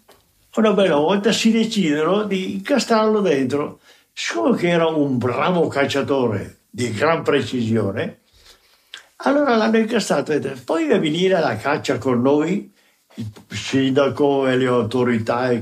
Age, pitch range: 60-79, 125-190 Hz